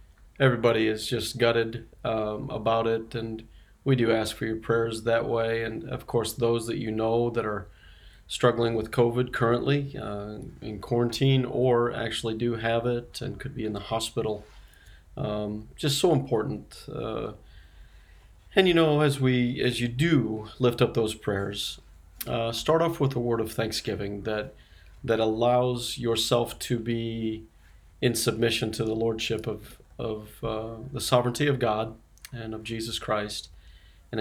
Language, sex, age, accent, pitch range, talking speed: English, male, 30-49, American, 105-120 Hz, 160 wpm